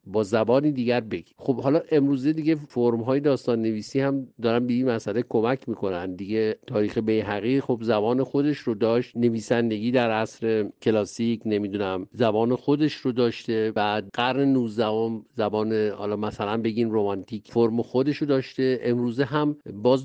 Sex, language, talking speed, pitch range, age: male, Persian, 160 wpm, 115-145 Hz, 50-69